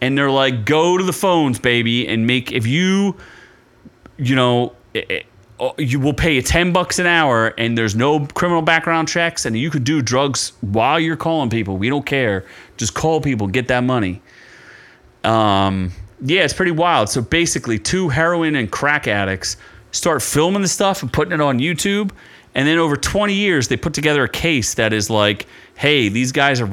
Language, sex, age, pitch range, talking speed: English, male, 30-49, 120-165 Hz, 195 wpm